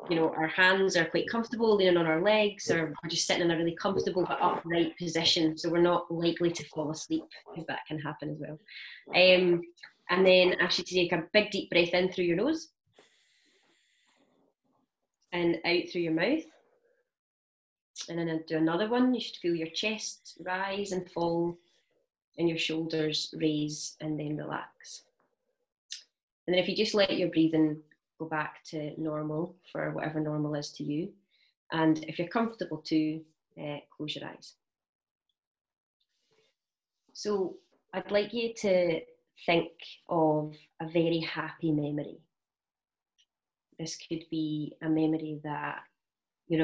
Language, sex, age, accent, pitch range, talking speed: English, female, 20-39, British, 155-190 Hz, 150 wpm